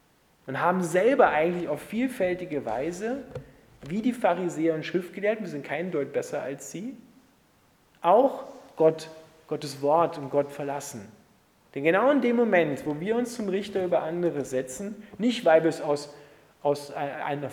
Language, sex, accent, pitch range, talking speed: German, male, German, 150-195 Hz, 155 wpm